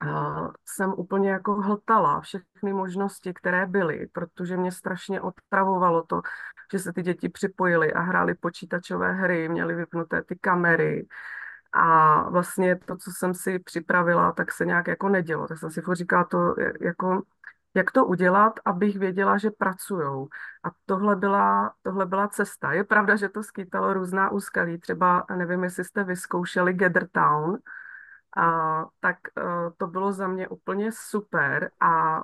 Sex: female